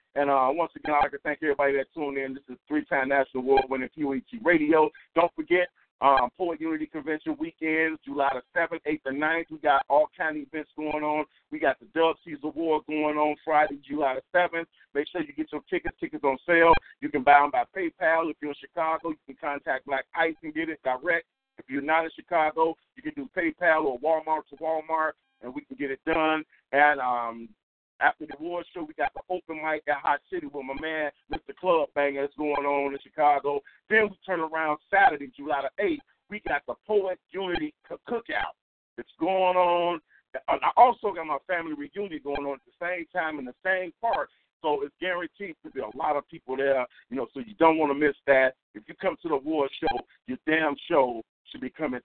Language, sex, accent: English, male, American